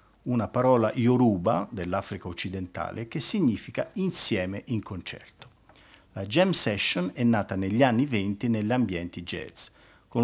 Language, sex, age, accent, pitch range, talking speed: Italian, male, 50-69, native, 100-135 Hz, 130 wpm